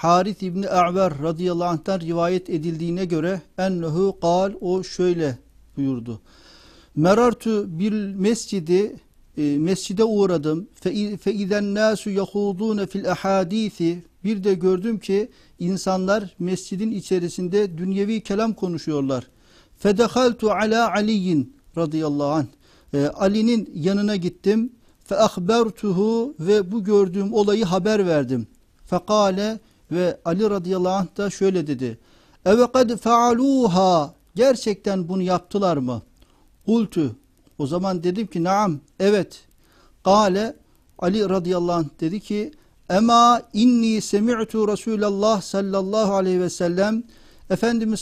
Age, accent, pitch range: 50-69, native, 175-215 Hz